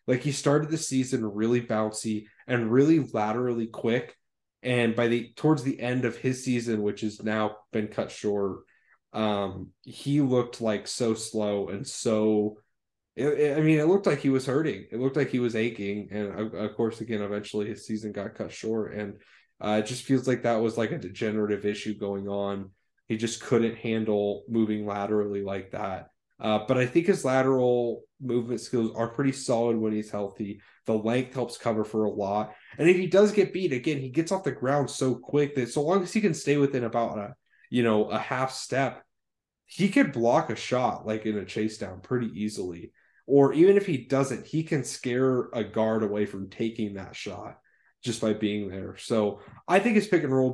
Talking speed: 200 wpm